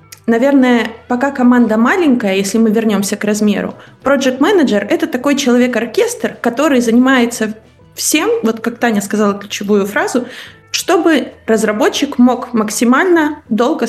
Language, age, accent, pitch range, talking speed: Russian, 20-39, native, 205-250 Hz, 120 wpm